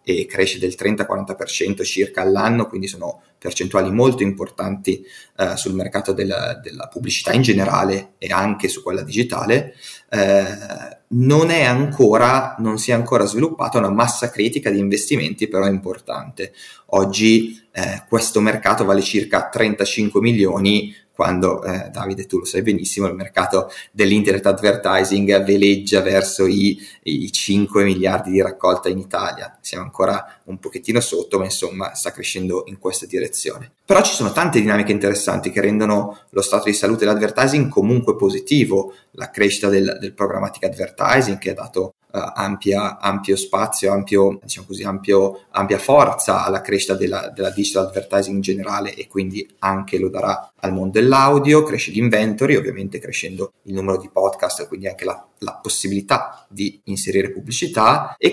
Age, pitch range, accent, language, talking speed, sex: 20-39, 95-115 Hz, native, Italian, 150 wpm, male